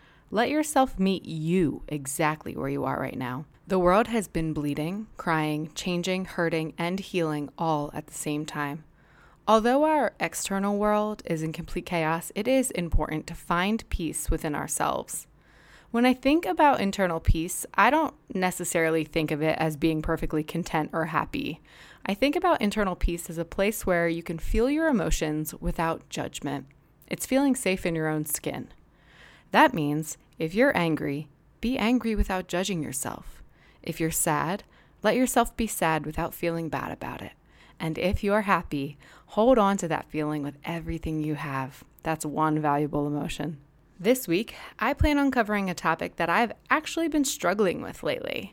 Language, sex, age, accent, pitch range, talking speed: English, female, 20-39, American, 155-210 Hz, 170 wpm